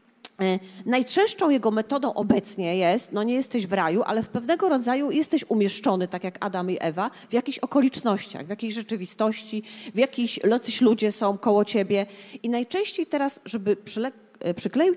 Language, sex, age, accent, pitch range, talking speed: Polish, female, 30-49, native, 195-265 Hz, 155 wpm